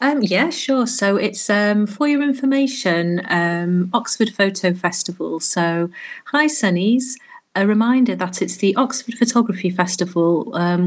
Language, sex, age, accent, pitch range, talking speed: English, female, 40-59, British, 175-220 Hz, 140 wpm